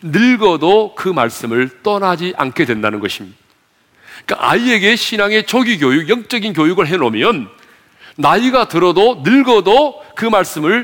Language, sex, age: Korean, male, 40-59